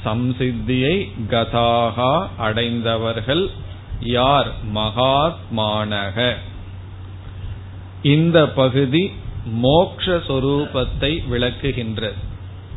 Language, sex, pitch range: Tamil, male, 100-135 Hz